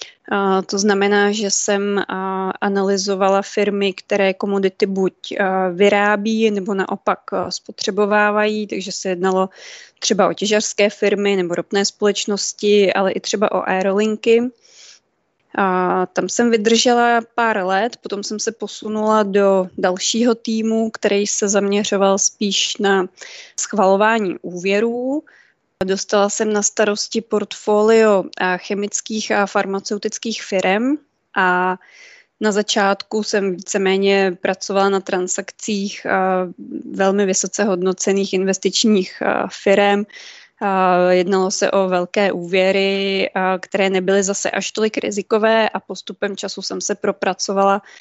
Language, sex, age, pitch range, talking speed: Czech, female, 20-39, 195-215 Hz, 105 wpm